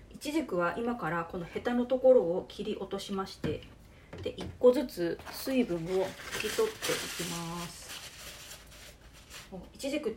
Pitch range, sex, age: 170-245 Hz, female, 30-49